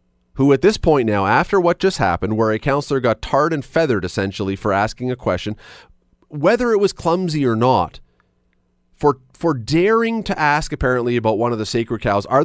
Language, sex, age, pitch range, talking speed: English, male, 30-49, 105-155 Hz, 195 wpm